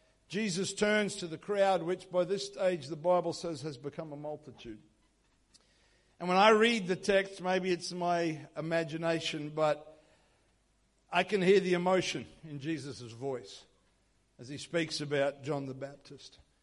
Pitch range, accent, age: 150-220 Hz, Australian, 60-79